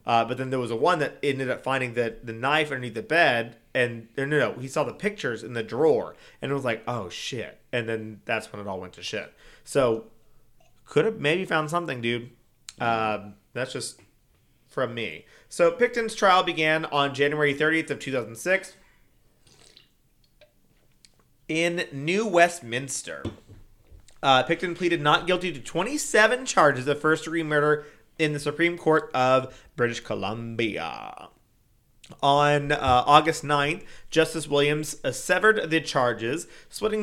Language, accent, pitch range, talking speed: English, American, 120-170 Hz, 155 wpm